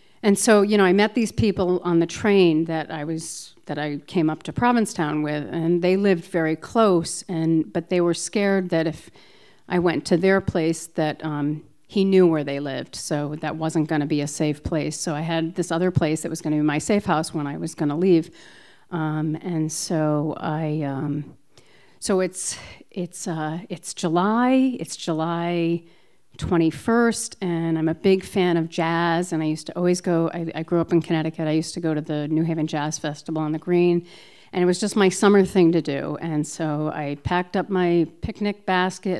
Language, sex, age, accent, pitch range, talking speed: English, female, 40-59, American, 155-185 Hz, 210 wpm